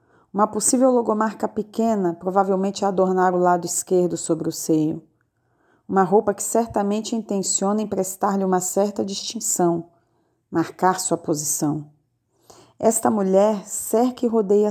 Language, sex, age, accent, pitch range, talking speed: Portuguese, female, 40-59, Brazilian, 160-210 Hz, 120 wpm